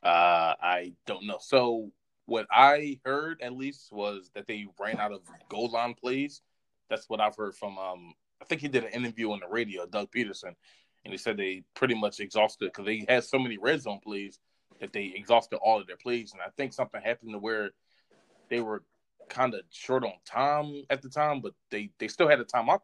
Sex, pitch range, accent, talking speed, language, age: male, 105-135 Hz, American, 220 wpm, English, 20-39